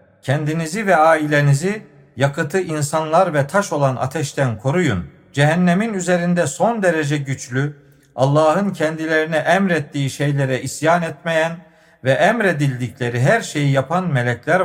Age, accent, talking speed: 50-69, native, 110 wpm